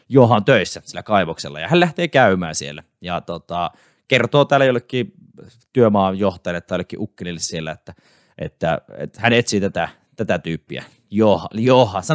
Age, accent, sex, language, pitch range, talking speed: 30-49, native, male, Finnish, 90-130 Hz, 140 wpm